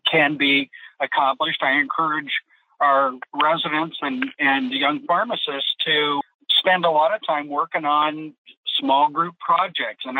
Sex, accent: male, American